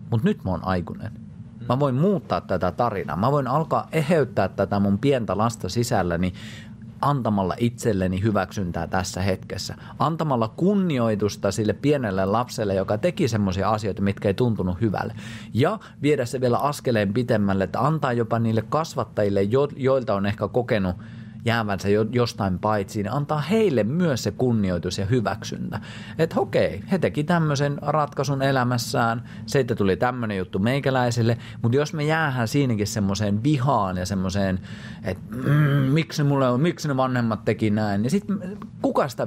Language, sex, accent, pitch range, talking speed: Finnish, male, native, 100-140 Hz, 150 wpm